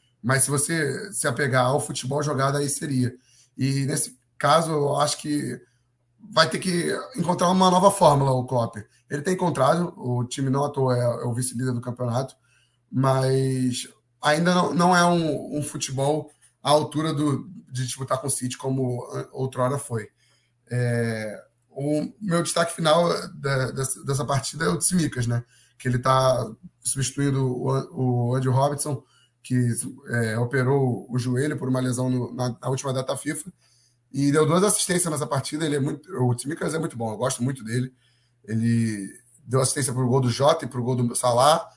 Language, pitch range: Portuguese, 125-150 Hz